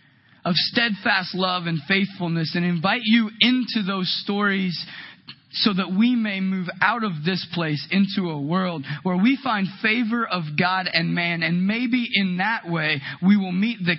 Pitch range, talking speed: 145-205 Hz, 170 wpm